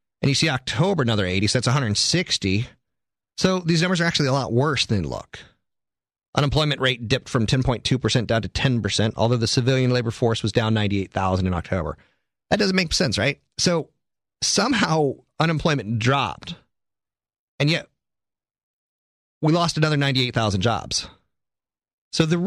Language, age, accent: English, 30-49, American